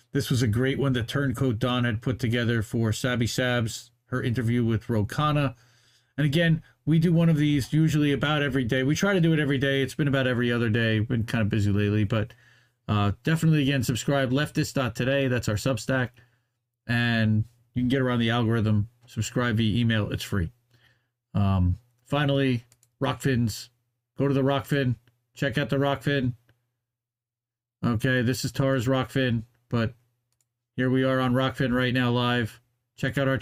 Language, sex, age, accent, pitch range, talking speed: English, male, 40-59, American, 120-135 Hz, 175 wpm